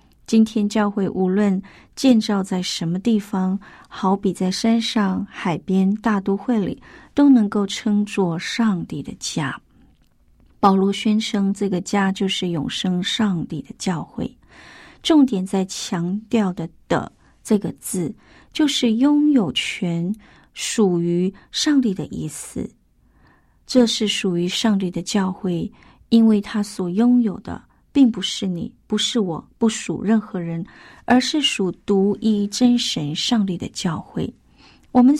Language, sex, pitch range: Chinese, female, 185-230 Hz